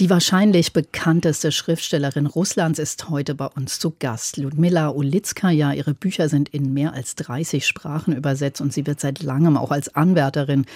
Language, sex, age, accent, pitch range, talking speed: German, female, 50-69, German, 140-165 Hz, 165 wpm